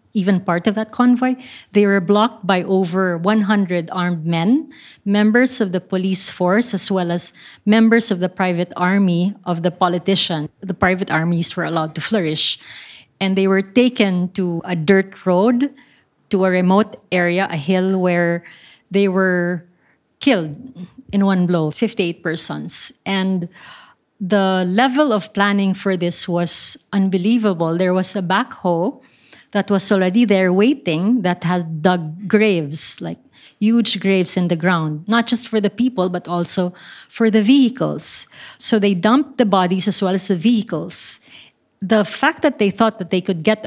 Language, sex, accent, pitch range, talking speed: Czech, female, Filipino, 180-220 Hz, 160 wpm